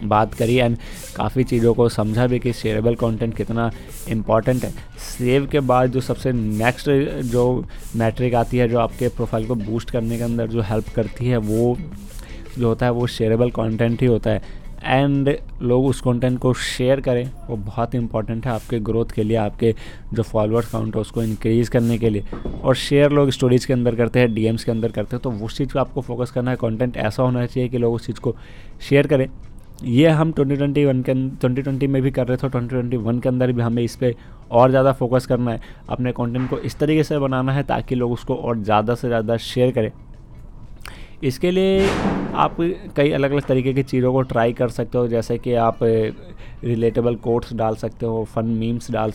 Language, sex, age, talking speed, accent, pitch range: Hindi, male, 20-39, 205 wpm, native, 115-130 Hz